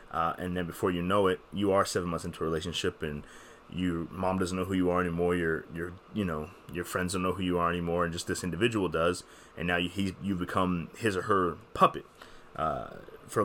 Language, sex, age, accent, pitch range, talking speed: English, male, 20-39, American, 85-95 Hz, 230 wpm